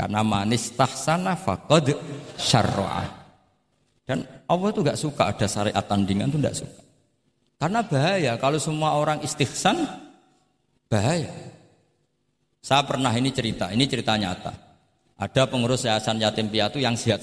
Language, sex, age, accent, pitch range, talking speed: Indonesian, male, 50-69, native, 105-135 Hz, 130 wpm